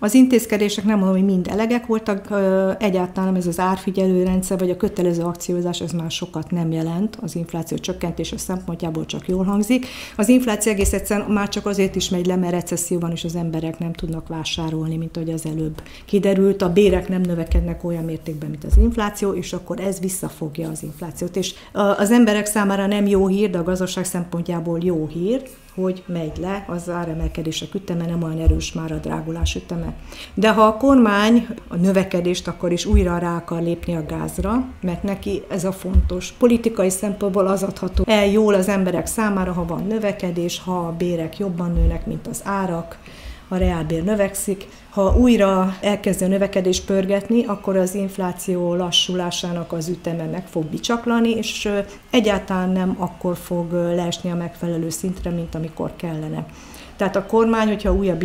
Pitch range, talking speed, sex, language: 170-205 Hz, 170 wpm, female, Hungarian